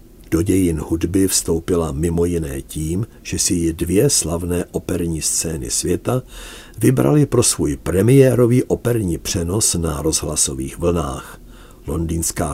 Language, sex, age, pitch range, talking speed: Czech, male, 50-69, 80-105 Hz, 120 wpm